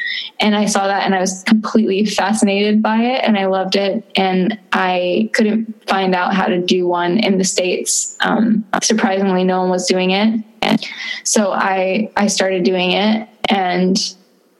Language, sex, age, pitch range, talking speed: English, female, 10-29, 185-220 Hz, 175 wpm